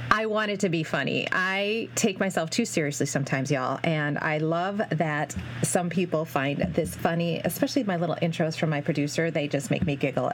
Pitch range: 160-215 Hz